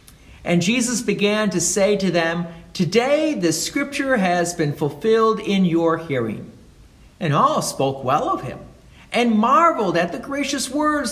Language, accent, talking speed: English, American, 150 wpm